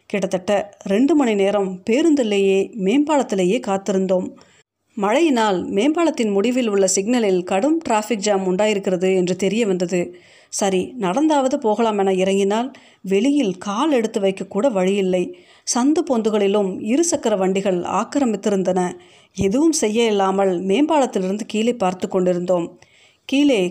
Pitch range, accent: 190-235 Hz, native